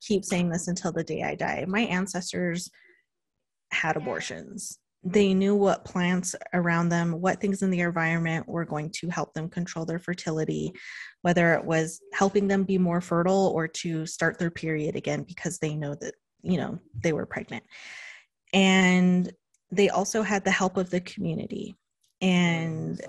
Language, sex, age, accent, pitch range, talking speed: English, female, 20-39, American, 165-190 Hz, 165 wpm